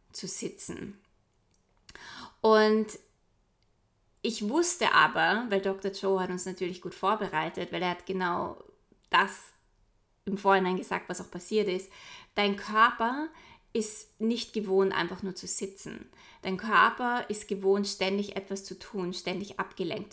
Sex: female